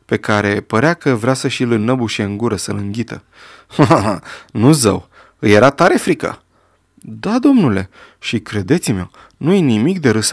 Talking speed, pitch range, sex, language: 155 wpm, 105-150 Hz, male, Romanian